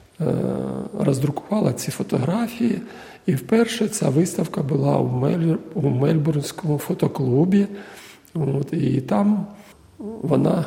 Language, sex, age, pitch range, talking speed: Ukrainian, male, 50-69, 140-180 Hz, 80 wpm